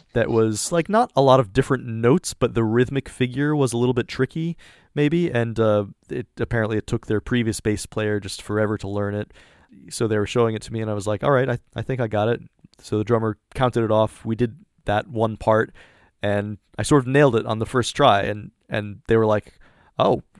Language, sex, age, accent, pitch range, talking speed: English, male, 20-39, American, 110-135 Hz, 235 wpm